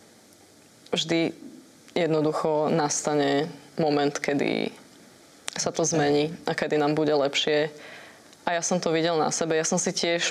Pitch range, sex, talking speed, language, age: 155-170 Hz, female, 140 wpm, Slovak, 20-39